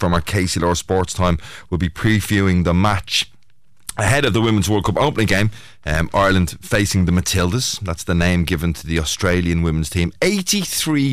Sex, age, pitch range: male, 30-49, 85-110 Hz